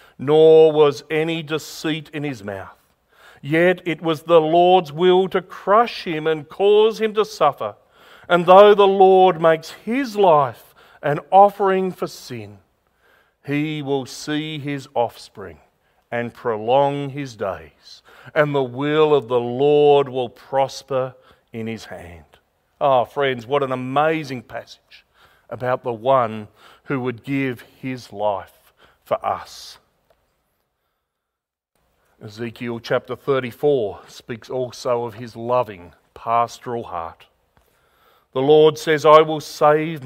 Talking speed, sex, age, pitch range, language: 125 wpm, male, 40-59, 125-160 Hz, English